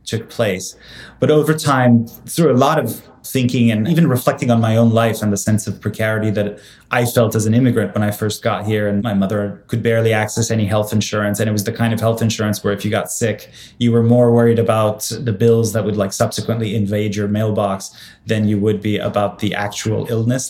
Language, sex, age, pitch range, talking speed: English, male, 20-39, 105-120 Hz, 225 wpm